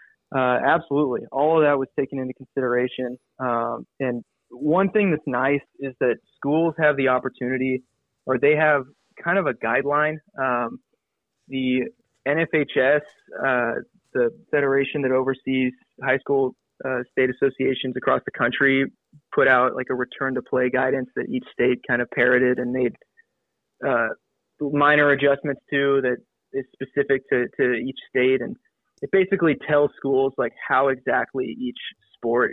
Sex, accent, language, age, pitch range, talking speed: male, American, English, 20-39, 130-145 Hz, 150 wpm